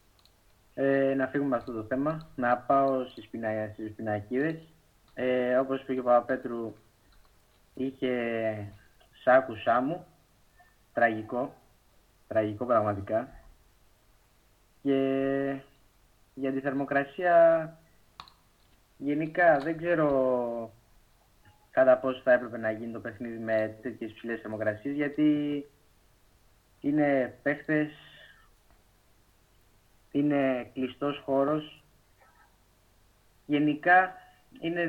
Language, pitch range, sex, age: Greek, 110-140 Hz, male, 30-49